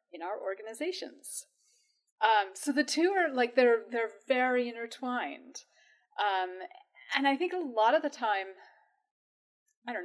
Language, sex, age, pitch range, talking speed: English, female, 30-49, 195-290 Hz, 145 wpm